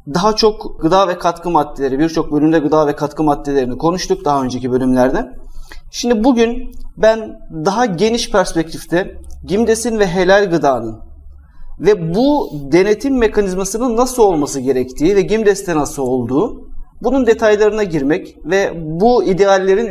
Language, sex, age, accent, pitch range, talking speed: Turkish, male, 40-59, native, 155-220 Hz, 130 wpm